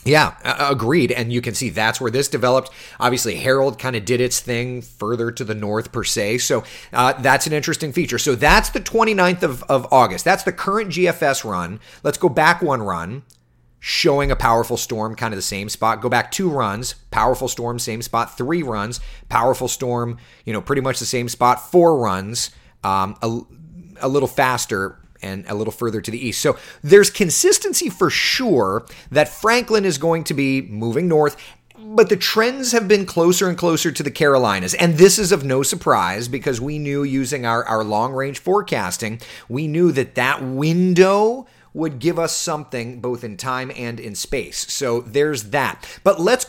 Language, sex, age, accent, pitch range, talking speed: English, male, 30-49, American, 120-175 Hz, 190 wpm